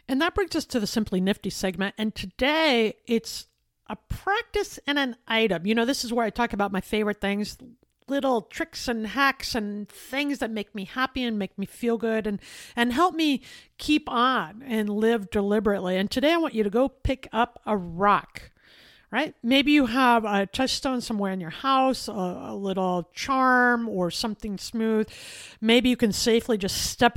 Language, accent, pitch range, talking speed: English, American, 205-255 Hz, 190 wpm